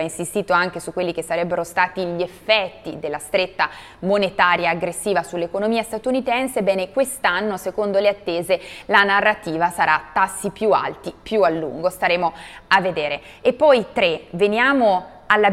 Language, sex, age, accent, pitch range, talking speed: Italian, female, 20-39, native, 175-215 Hz, 145 wpm